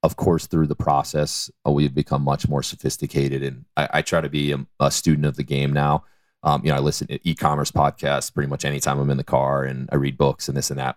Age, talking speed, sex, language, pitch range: 30-49, 250 wpm, male, English, 70-75 Hz